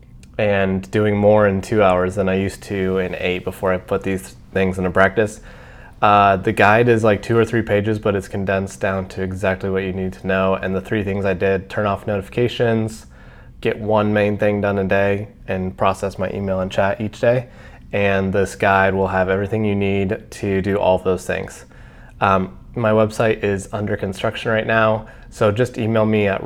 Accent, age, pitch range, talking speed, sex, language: American, 20-39, 95-110 Hz, 200 wpm, male, English